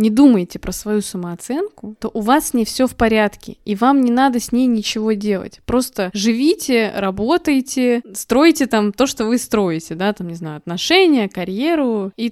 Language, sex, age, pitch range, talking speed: Russian, female, 20-39, 200-250 Hz, 175 wpm